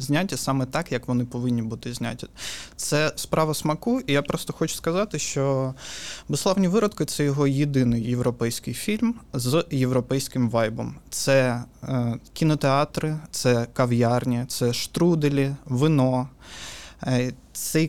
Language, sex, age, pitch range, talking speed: Ukrainian, male, 20-39, 125-150 Hz, 125 wpm